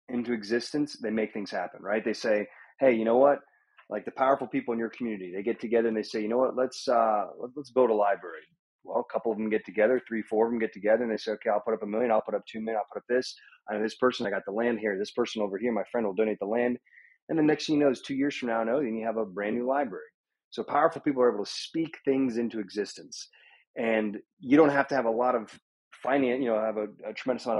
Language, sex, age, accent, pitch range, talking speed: English, male, 30-49, American, 110-130 Hz, 285 wpm